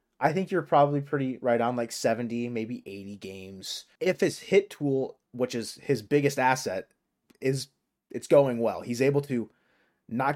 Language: English